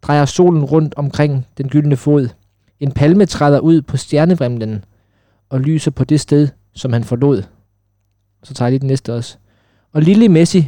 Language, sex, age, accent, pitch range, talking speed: Danish, male, 20-39, native, 125-155 Hz, 170 wpm